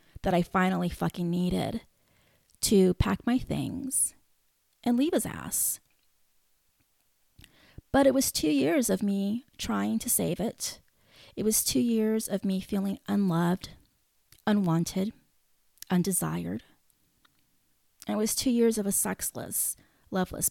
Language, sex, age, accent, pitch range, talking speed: English, female, 30-49, American, 185-265 Hz, 125 wpm